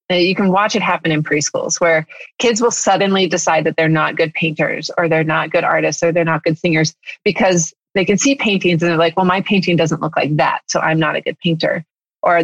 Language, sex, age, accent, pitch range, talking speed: English, female, 30-49, American, 165-195 Hz, 235 wpm